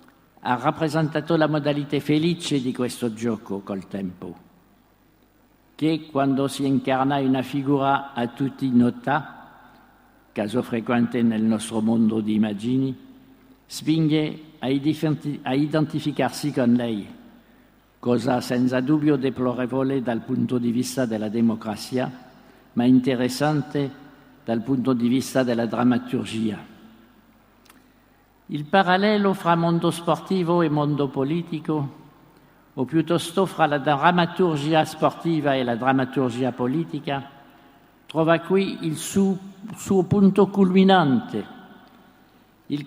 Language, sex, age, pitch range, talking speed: Italian, male, 60-79, 125-170 Hz, 105 wpm